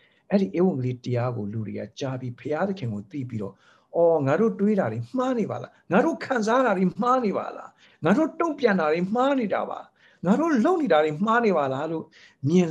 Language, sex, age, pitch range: English, male, 60-79, 110-165 Hz